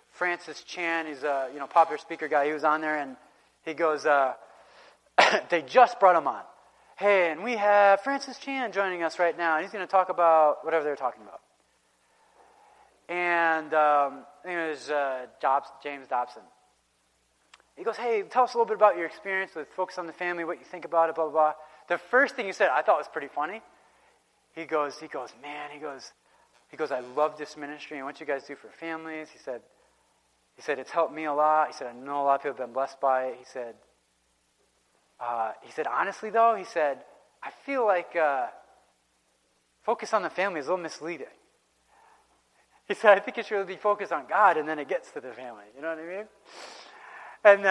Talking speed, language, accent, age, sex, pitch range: 215 wpm, English, American, 30-49, male, 145-205 Hz